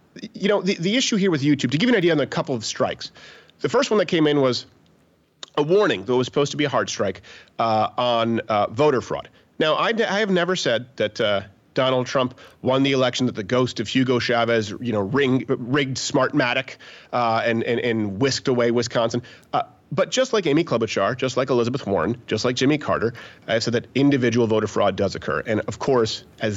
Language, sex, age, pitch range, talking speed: English, male, 30-49, 115-160 Hz, 220 wpm